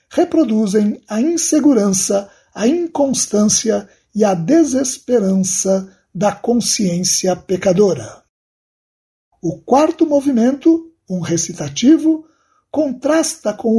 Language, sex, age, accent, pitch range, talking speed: Portuguese, male, 60-79, Brazilian, 190-285 Hz, 80 wpm